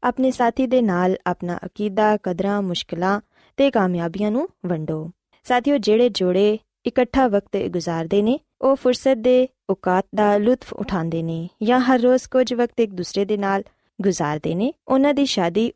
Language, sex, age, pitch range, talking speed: Punjabi, female, 20-39, 180-250 Hz, 155 wpm